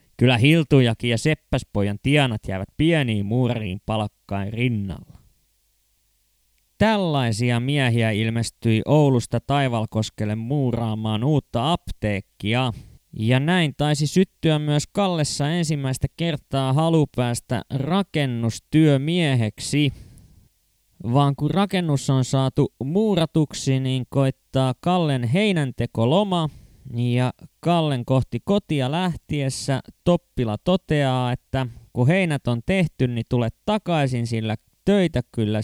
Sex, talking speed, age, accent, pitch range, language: male, 95 wpm, 20-39, native, 115-150 Hz, Finnish